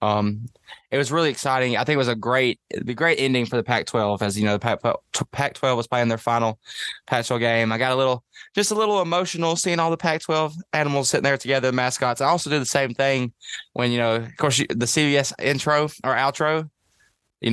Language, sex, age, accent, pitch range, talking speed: English, male, 20-39, American, 115-140 Hz, 210 wpm